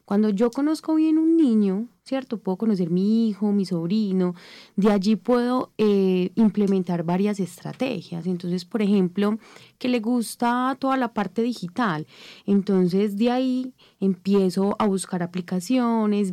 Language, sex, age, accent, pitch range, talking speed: Spanish, female, 20-39, Colombian, 180-230 Hz, 135 wpm